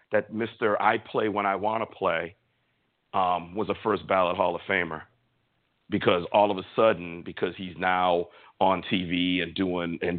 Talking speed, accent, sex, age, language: 170 wpm, American, male, 50-69, English